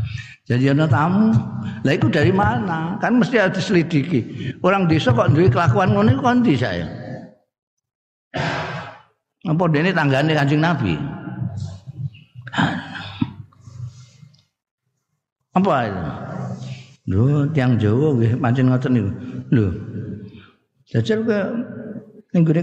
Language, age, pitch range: Indonesian, 50-69, 110-150 Hz